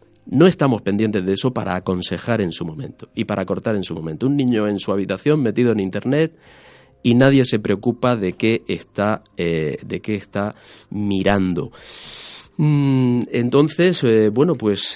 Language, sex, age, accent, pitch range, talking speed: Spanish, male, 30-49, Spanish, 100-135 Hz, 165 wpm